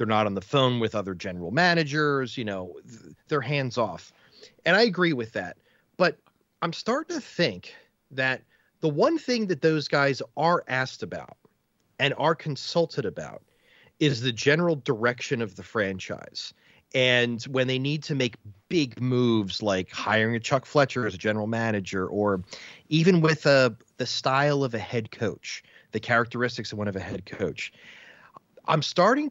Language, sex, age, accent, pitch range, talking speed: English, male, 30-49, American, 105-140 Hz, 165 wpm